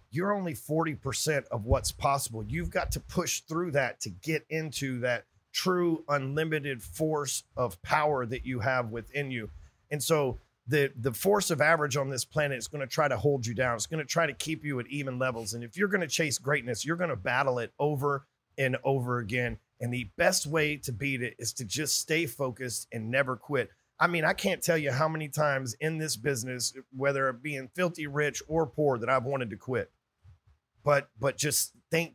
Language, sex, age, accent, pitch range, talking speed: English, male, 40-59, American, 125-150 Hz, 205 wpm